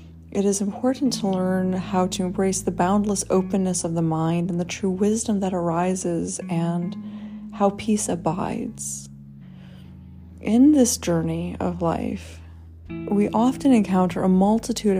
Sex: female